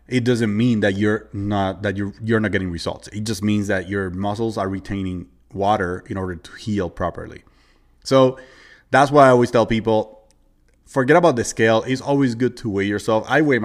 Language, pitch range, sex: English, 100-125 Hz, male